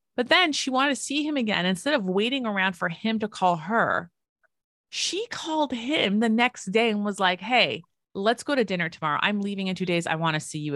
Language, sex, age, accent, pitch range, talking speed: English, female, 30-49, American, 175-230 Hz, 230 wpm